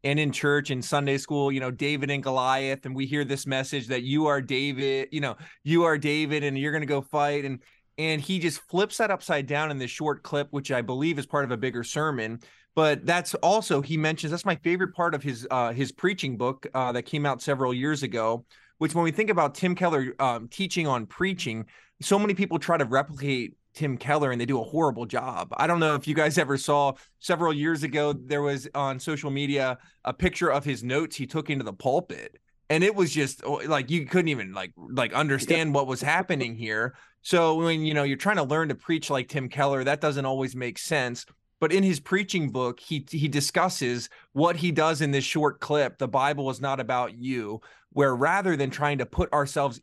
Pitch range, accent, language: 130-160 Hz, American, English